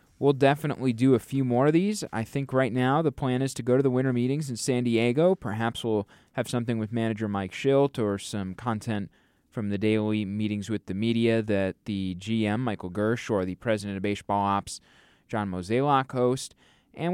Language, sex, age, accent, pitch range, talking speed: English, male, 20-39, American, 100-125 Hz, 200 wpm